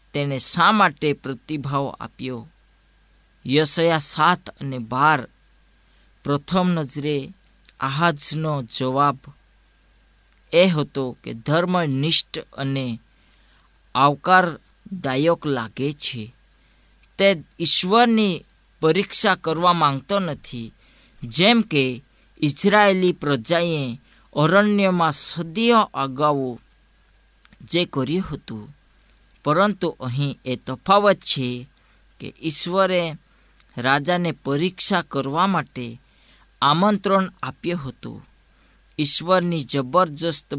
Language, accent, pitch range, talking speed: Gujarati, native, 135-180 Hz, 70 wpm